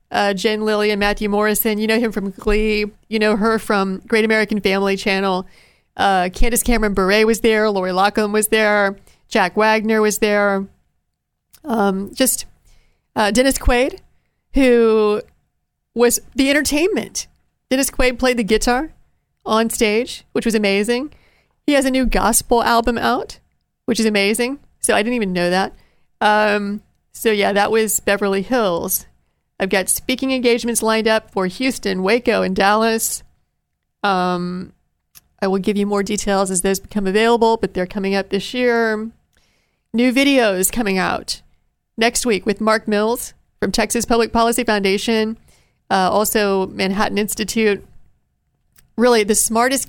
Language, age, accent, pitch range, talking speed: English, 40-59, American, 200-235 Hz, 150 wpm